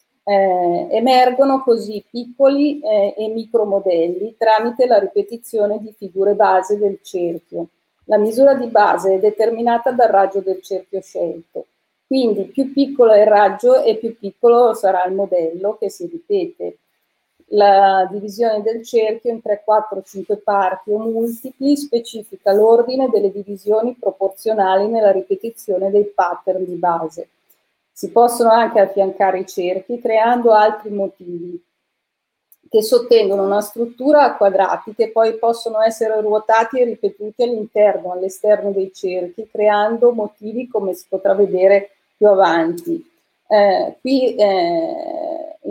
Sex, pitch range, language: female, 195-235 Hz, Italian